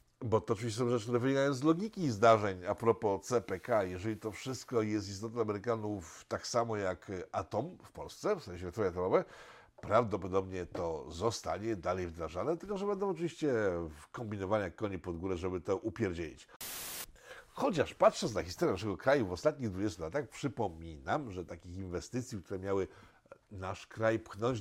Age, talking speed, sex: 50-69, 155 wpm, male